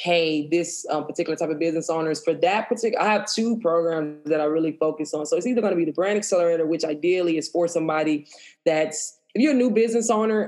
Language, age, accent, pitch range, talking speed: English, 20-39, American, 160-180 Hz, 235 wpm